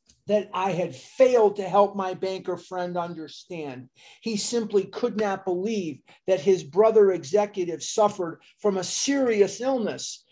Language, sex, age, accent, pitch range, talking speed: English, male, 50-69, American, 175-220 Hz, 140 wpm